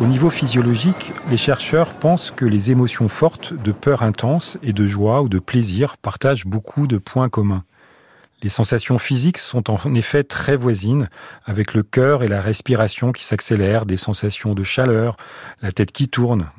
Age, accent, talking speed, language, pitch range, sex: 40-59, French, 175 wpm, French, 105-135 Hz, male